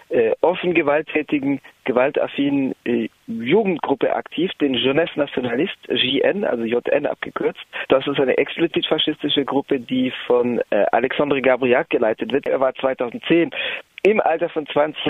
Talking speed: 125 wpm